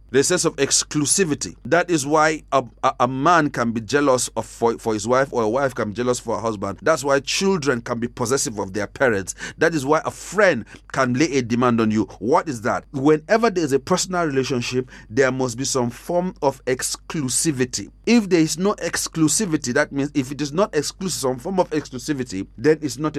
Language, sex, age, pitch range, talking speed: English, male, 40-59, 130-195 Hz, 215 wpm